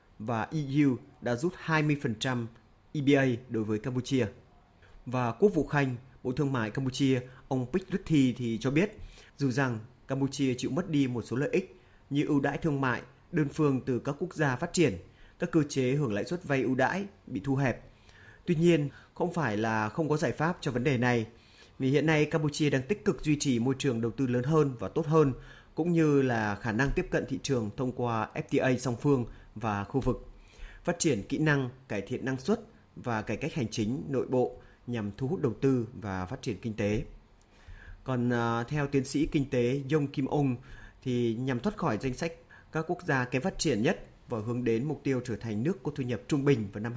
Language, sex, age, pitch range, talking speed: Vietnamese, male, 30-49, 115-150 Hz, 215 wpm